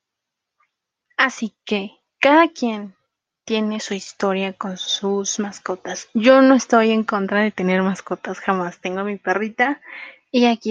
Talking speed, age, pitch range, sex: 135 wpm, 20-39, 200-230 Hz, female